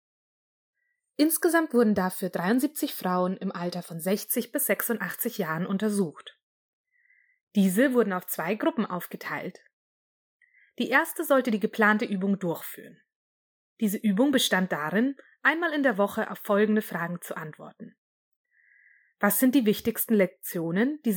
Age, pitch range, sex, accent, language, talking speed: 20-39, 185-245 Hz, female, German, German, 130 wpm